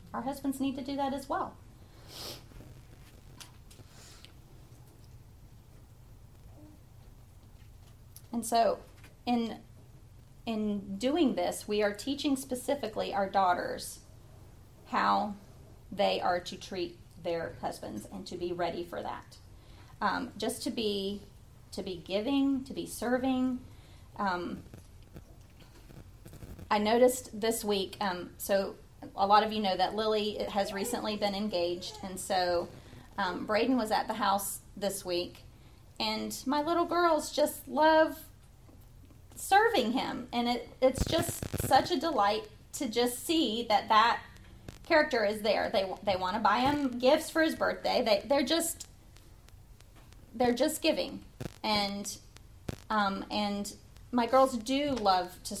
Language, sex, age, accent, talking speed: English, female, 30-49, American, 125 wpm